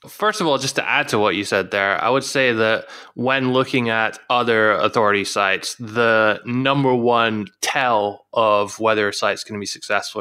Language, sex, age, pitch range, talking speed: English, male, 20-39, 105-130 Hz, 195 wpm